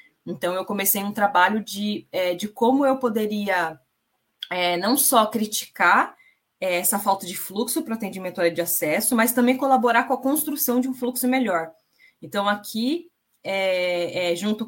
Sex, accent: female, Brazilian